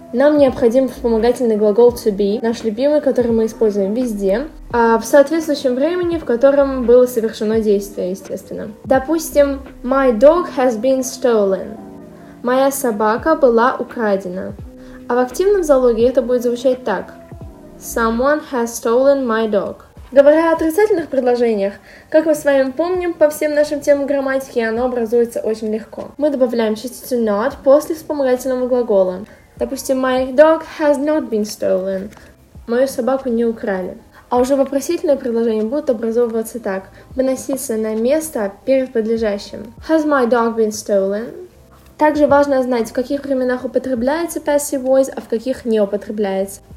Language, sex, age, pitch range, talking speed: Russian, female, 10-29, 225-285 Hz, 145 wpm